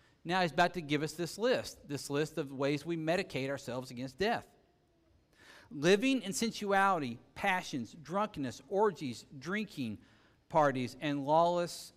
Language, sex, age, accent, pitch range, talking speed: English, male, 50-69, American, 150-205 Hz, 135 wpm